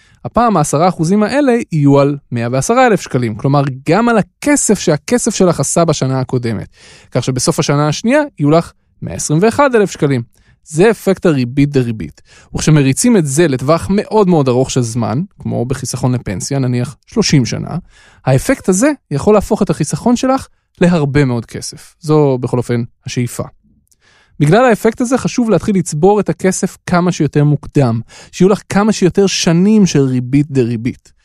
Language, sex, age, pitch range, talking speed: Hebrew, male, 20-39, 135-195 Hz, 150 wpm